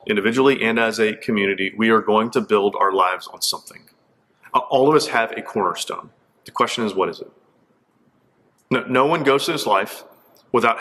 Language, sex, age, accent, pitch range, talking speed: English, male, 30-49, American, 110-130 Hz, 190 wpm